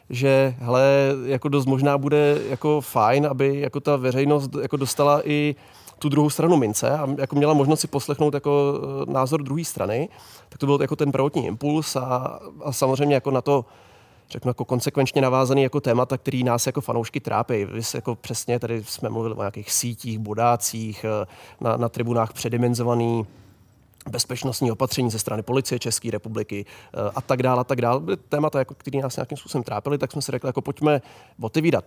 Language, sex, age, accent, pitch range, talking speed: Czech, male, 30-49, native, 115-140 Hz, 170 wpm